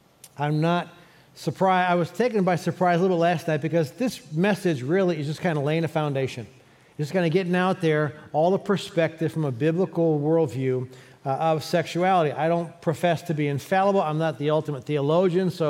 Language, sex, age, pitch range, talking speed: English, male, 40-59, 145-180 Hz, 195 wpm